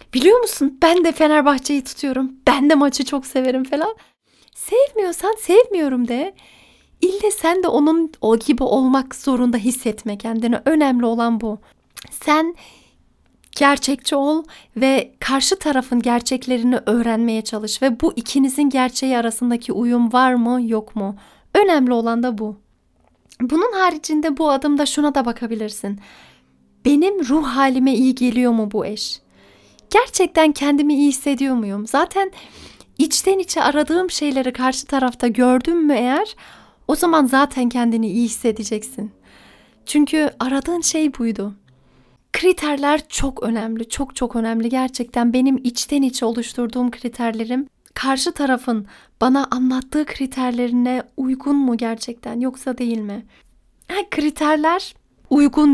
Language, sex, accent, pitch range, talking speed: Turkish, female, native, 235-295 Hz, 125 wpm